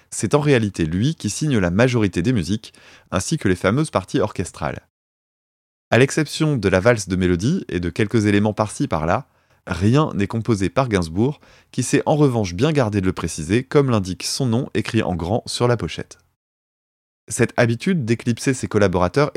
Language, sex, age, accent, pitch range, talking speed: French, male, 20-39, French, 95-135 Hz, 180 wpm